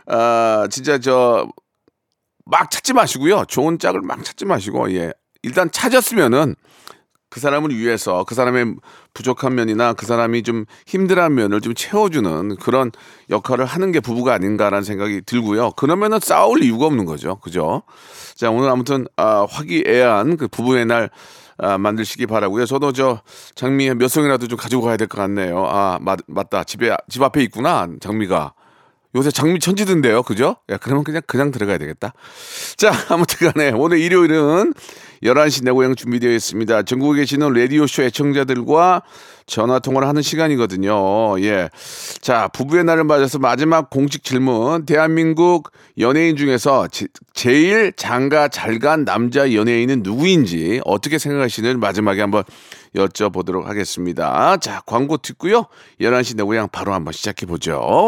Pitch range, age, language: 110-150 Hz, 40-59, Korean